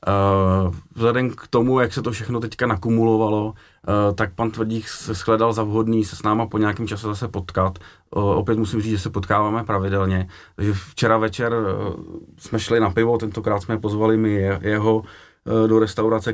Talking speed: 180 wpm